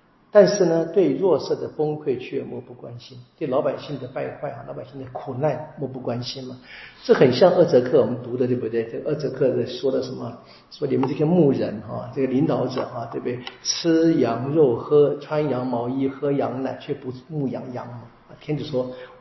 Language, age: Chinese, 50-69